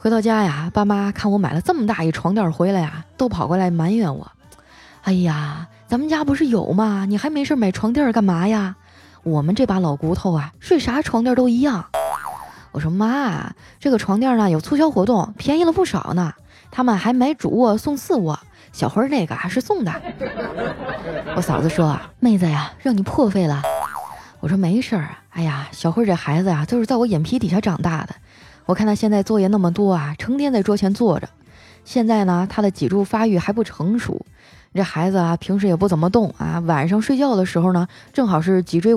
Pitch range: 165-230 Hz